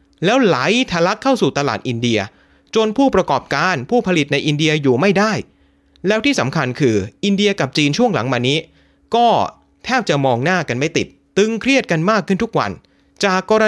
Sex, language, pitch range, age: male, Thai, 120-200 Hz, 30-49